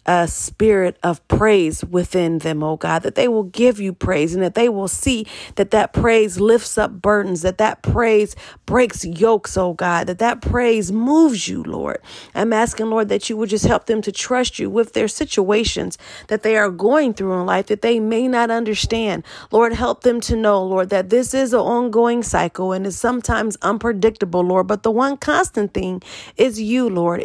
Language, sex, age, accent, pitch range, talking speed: English, female, 40-59, American, 180-225 Hz, 200 wpm